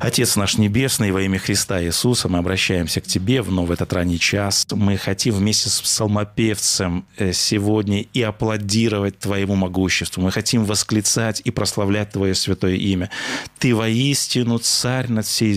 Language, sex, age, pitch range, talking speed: Russian, male, 20-39, 105-130 Hz, 150 wpm